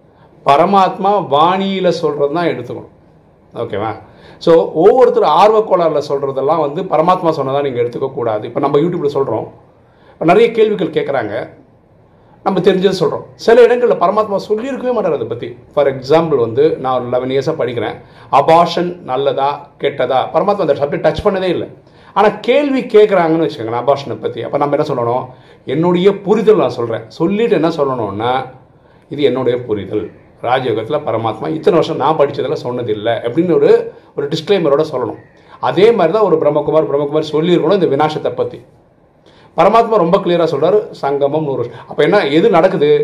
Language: Tamil